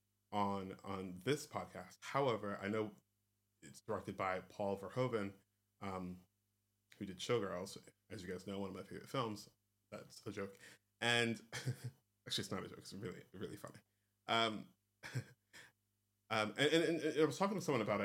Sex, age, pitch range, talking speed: male, 20-39, 100-120 Hz, 165 wpm